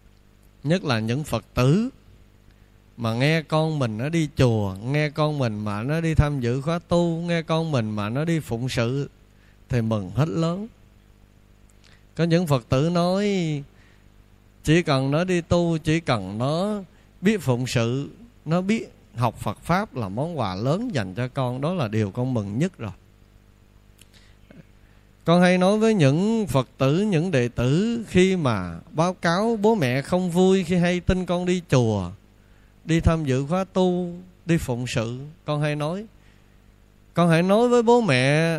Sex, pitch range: male, 105-170 Hz